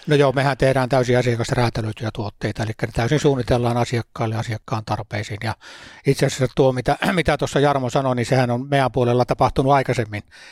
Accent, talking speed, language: native, 175 wpm, Finnish